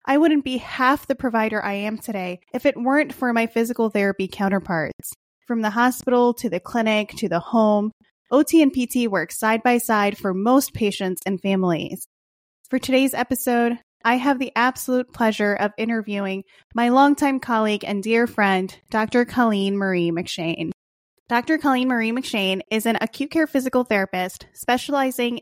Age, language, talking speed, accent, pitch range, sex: 20-39, English, 165 wpm, American, 195-250 Hz, female